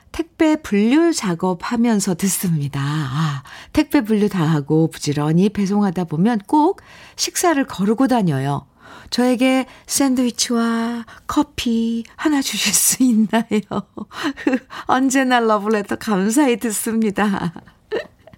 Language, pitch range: Korean, 180-260 Hz